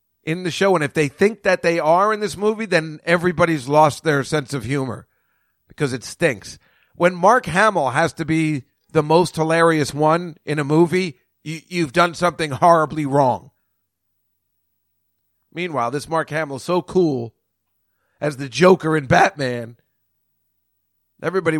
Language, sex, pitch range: English, male, 120-165 Hz